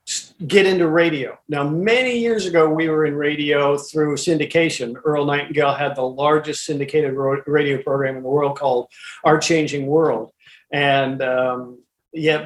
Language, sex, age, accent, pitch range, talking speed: English, male, 50-69, American, 140-165 Hz, 150 wpm